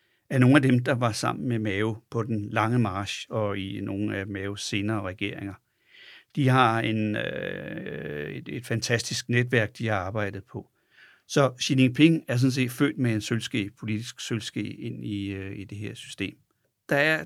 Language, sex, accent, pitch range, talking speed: Danish, male, native, 105-125 Hz, 185 wpm